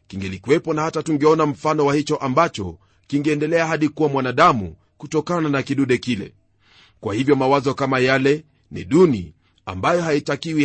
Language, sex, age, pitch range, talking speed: Swahili, male, 40-59, 115-165 Hz, 140 wpm